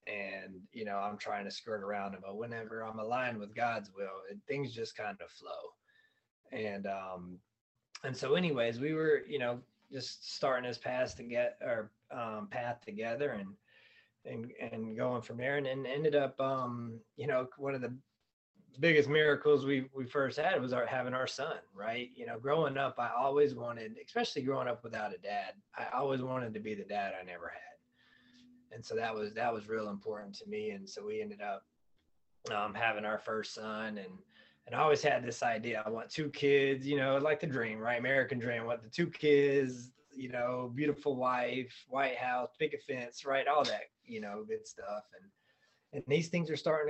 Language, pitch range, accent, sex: English, 115-145 Hz, American, male